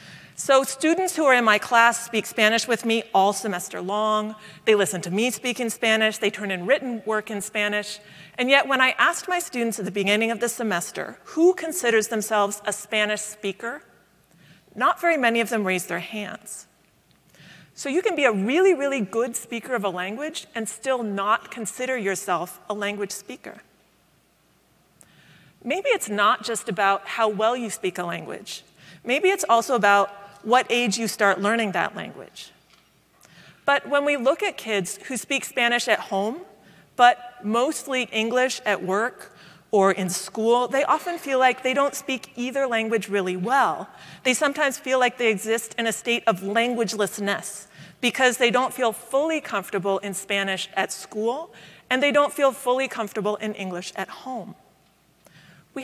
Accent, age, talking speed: American, 40-59, 170 wpm